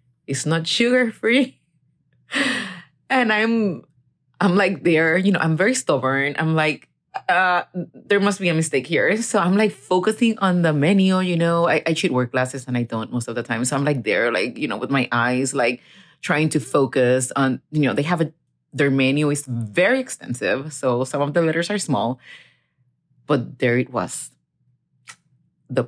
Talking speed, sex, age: 190 wpm, female, 30-49